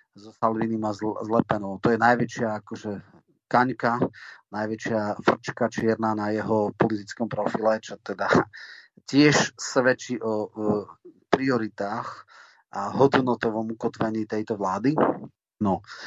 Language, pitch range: Slovak, 110-125 Hz